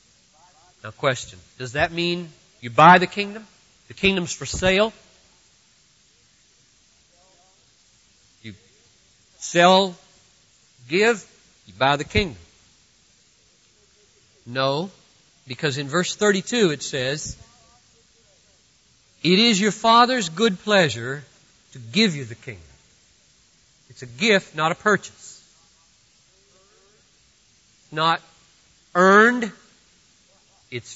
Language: English